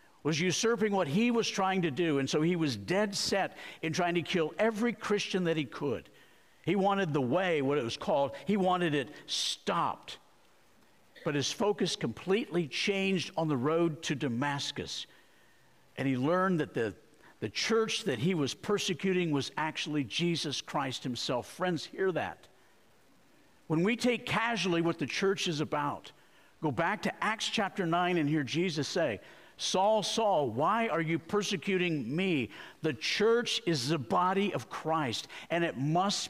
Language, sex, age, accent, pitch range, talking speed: English, male, 50-69, American, 150-200 Hz, 165 wpm